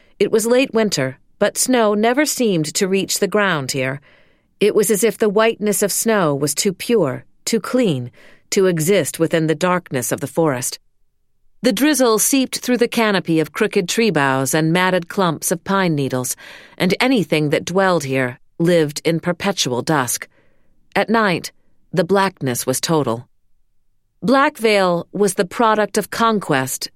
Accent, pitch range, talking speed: American, 155-215 Hz, 160 wpm